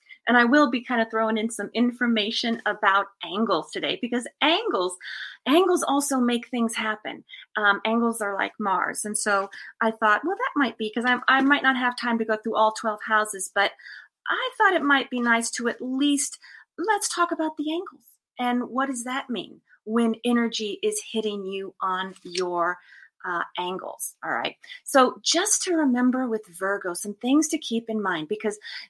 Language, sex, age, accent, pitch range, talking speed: English, female, 30-49, American, 220-275 Hz, 185 wpm